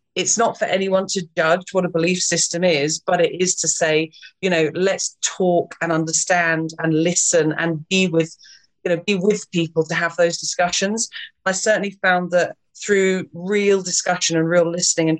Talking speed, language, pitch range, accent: 185 wpm, English, 165-195 Hz, British